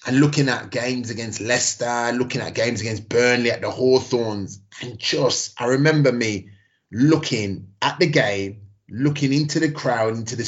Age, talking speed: 30-49, 165 wpm